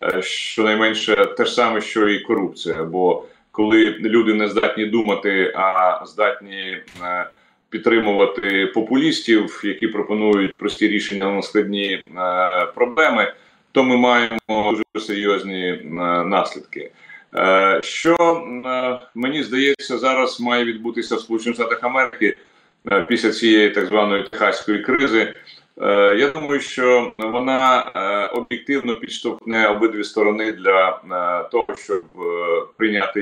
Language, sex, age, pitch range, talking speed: Ukrainian, male, 30-49, 100-125 Hz, 100 wpm